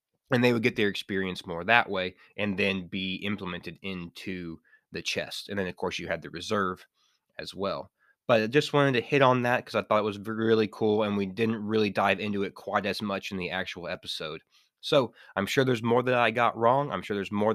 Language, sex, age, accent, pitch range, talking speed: English, male, 20-39, American, 90-115 Hz, 235 wpm